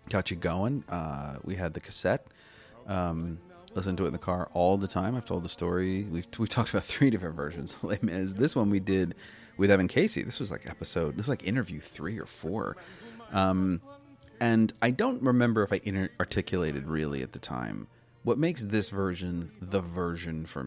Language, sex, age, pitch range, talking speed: English, male, 30-49, 80-105 Hz, 195 wpm